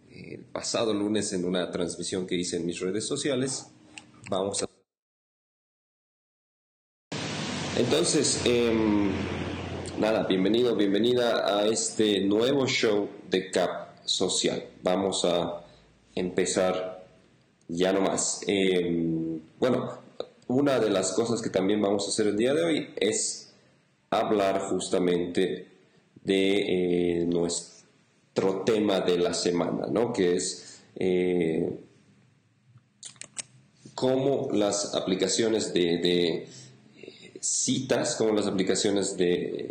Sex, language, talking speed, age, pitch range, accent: male, Spanish, 110 wpm, 40-59, 90-100 Hz, Mexican